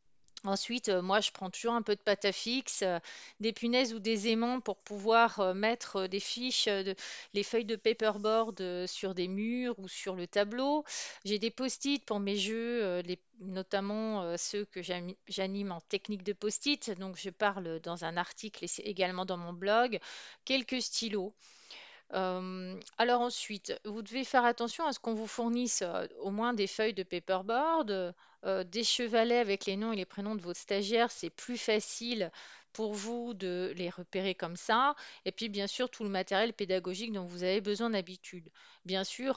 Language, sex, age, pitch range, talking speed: French, female, 40-59, 185-230 Hz, 175 wpm